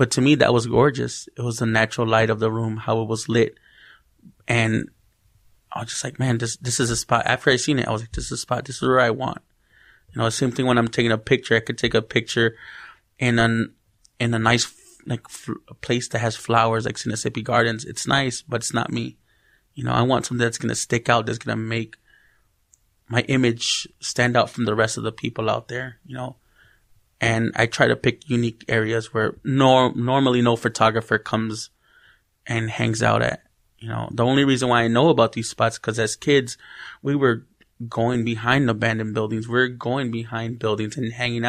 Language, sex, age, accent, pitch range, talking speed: English, male, 20-39, American, 115-125 Hz, 220 wpm